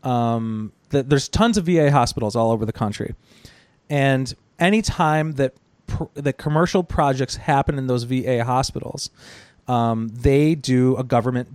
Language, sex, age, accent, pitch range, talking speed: English, male, 30-49, American, 125-155 Hz, 145 wpm